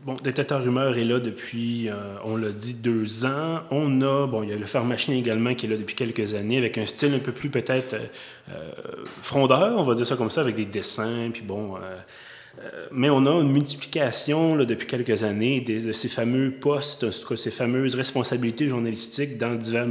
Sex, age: male, 30-49